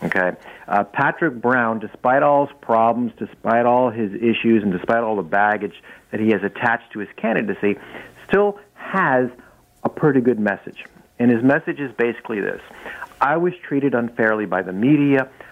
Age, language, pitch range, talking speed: 50-69, English, 110-145 Hz, 165 wpm